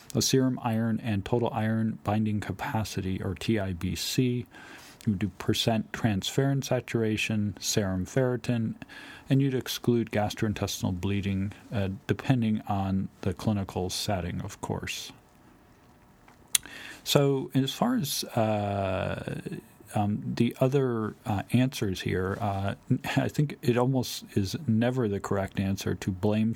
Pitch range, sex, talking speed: 95-115 Hz, male, 120 wpm